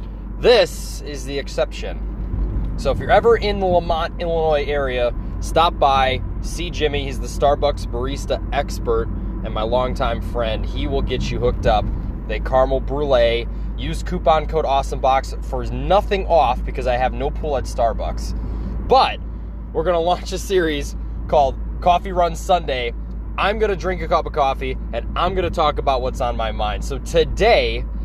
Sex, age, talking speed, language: male, 20-39, 165 wpm, English